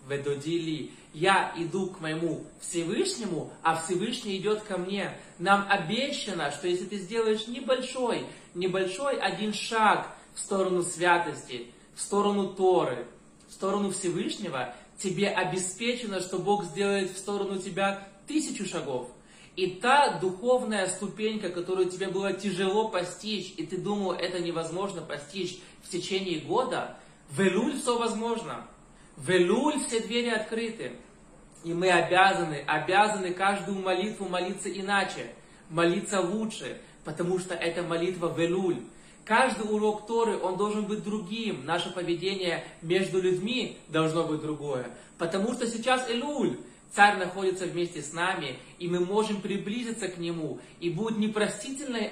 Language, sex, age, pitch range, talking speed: Russian, male, 20-39, 170-205 Hz, 130 wpm